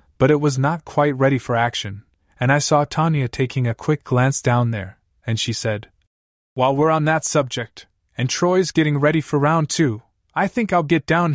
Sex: male